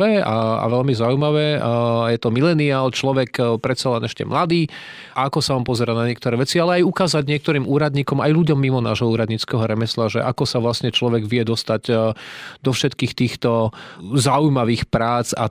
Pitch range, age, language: 115-140 Hz, 30-49, Slovak